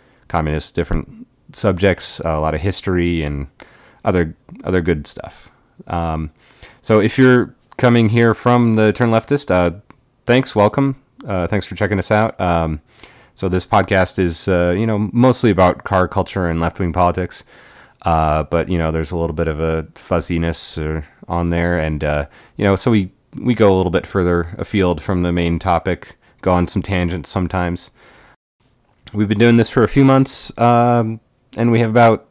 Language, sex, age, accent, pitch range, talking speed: English, male, 30-49, American, 85-110 Hz, 175 wpm